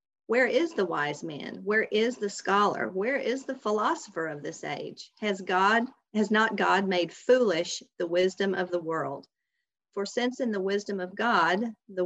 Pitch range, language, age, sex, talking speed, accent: 180-225 Hz, English, 40-59, female, 180 wpm, American